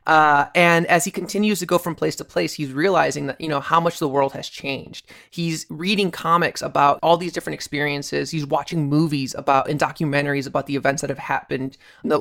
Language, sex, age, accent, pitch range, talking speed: English, male, 20-39, American, 145-185 Hz, 215 wpm